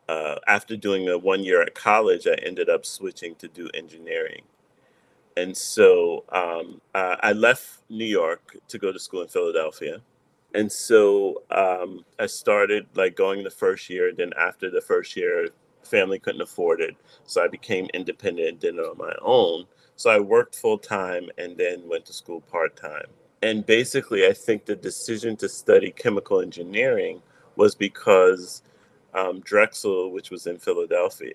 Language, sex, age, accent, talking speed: English, male, 30-49, American, 170 wpm